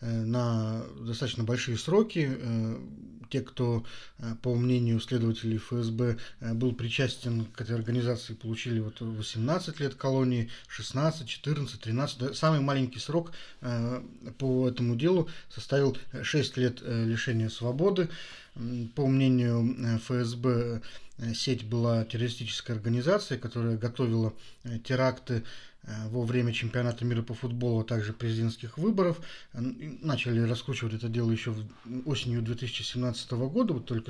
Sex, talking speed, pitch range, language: male, 110 wpm, 115-135 Hz, Russian